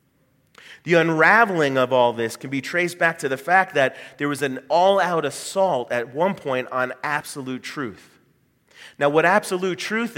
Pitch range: 130-180 Hz